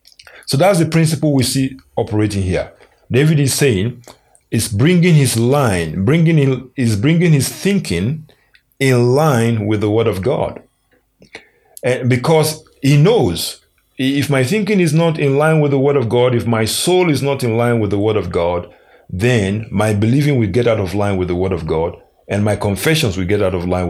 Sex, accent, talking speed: male, Nigerian, 195 wpm